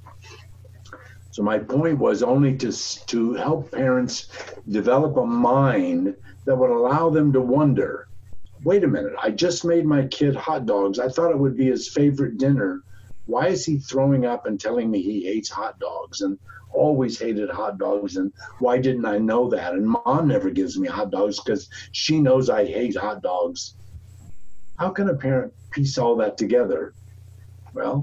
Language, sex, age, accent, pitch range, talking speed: English, male, 50-69, American, 100-140 Hz, 175 wpm